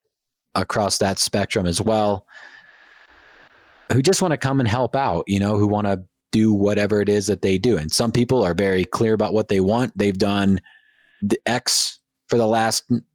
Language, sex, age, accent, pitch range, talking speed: English, male, 30-49, American, 90-120 Hz, 190 wpm